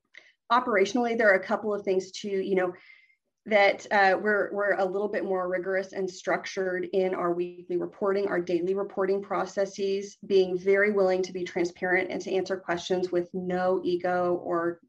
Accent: American